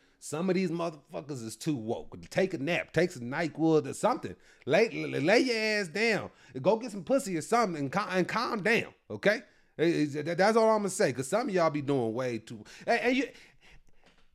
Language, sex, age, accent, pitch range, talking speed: English, male, 30-49, American, 125-190 Hz, 215 wpm